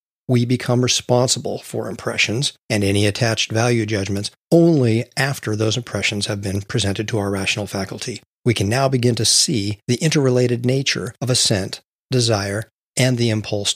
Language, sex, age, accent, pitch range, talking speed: English, male, 40-59, American, 105-125 Hz, 155 wpm